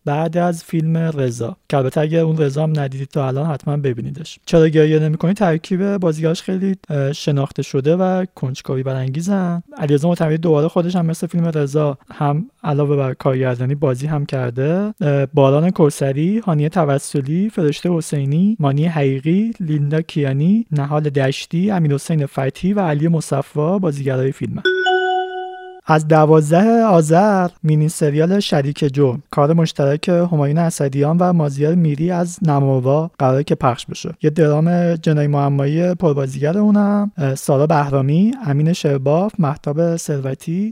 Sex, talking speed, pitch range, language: male, 135 wpm, 140-175 Hz, Persian